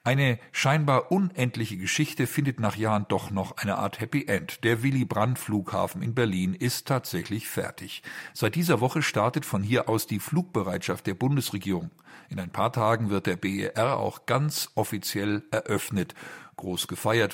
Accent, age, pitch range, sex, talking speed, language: German, 50-69, 100-130 Hz, male, 150 wpm, German